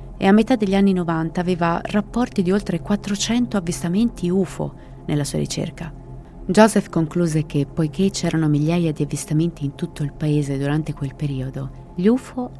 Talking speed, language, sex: 155 wpm, Italian, female